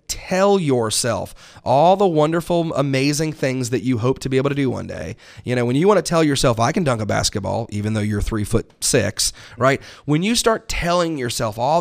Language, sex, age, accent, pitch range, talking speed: English, male, 30-49, American, 120-170 Hz, 220 wpm